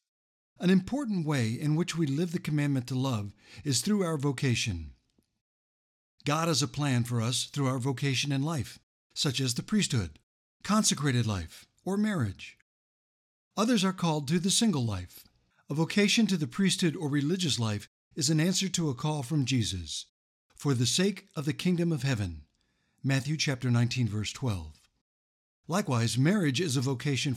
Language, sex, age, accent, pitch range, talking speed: English, male, 60-79, American, 115-170 Hz, 165 wpm